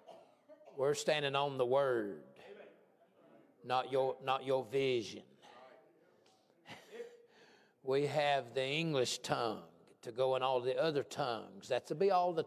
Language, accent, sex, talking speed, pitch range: English, American, male, 130 wpm, 130-195 Hz